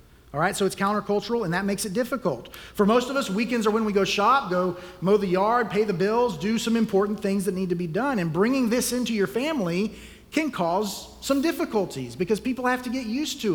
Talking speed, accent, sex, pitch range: 235 wpm, American, male, 170-230 Hz